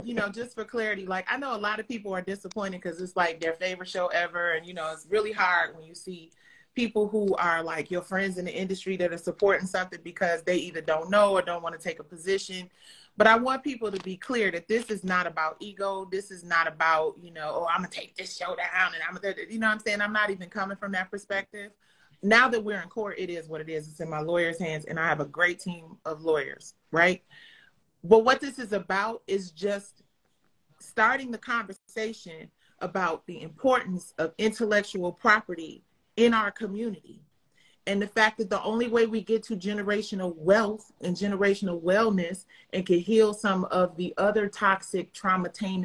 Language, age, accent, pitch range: English, 30-49, American, 175-210 Hz